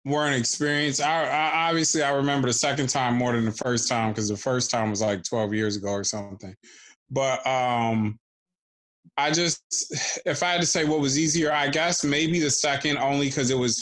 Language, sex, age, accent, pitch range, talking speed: English, male, 20-39, American, 110-135 Hz, 195 wpm